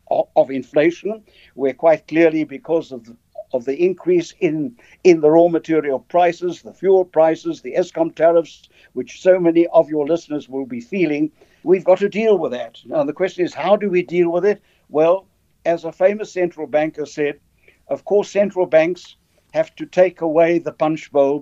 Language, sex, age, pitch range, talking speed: English, male, 60-79, 150-190 Hz, 180 wpm